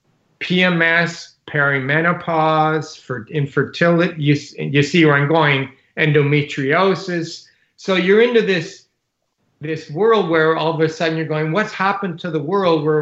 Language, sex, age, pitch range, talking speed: English, male, 40-59, 145-175 Hz, 135 wpm